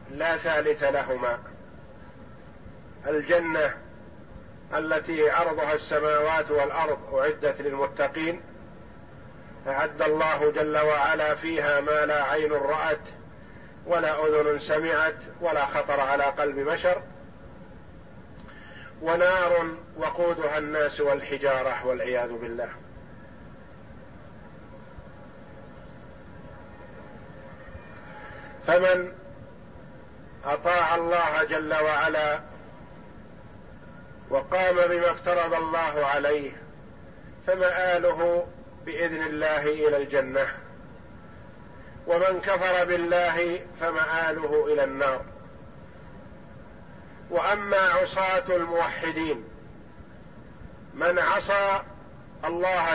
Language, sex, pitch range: Arabic, male, 145-175 Hz